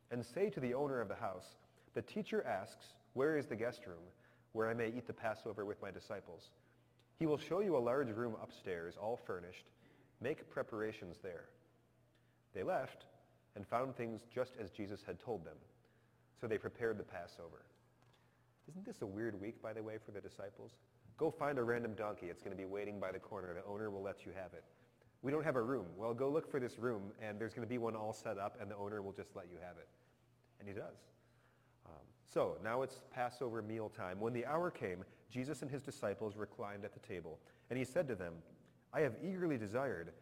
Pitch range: 105-125 Hz